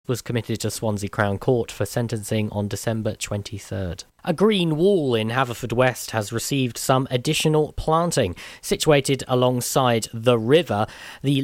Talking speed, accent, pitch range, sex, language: 140 wpm, British, 115-150 Hz, male, English